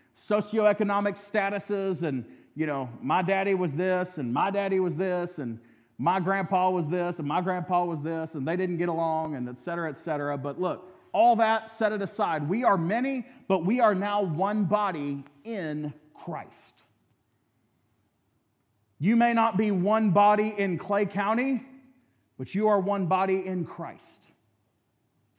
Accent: American